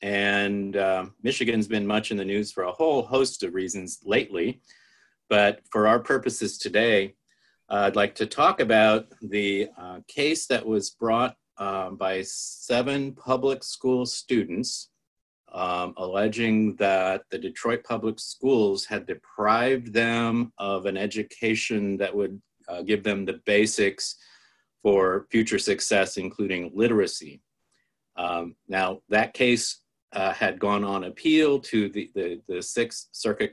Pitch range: 100-120 Hz